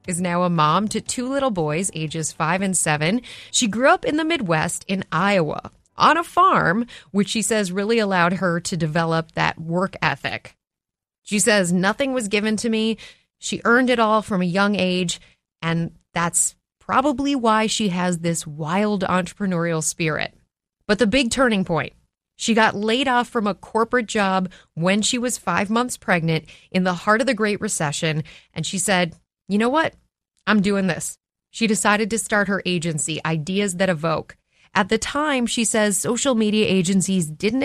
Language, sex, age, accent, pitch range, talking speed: English, female, 30-49, American, 170-220 Hz, 180 wpm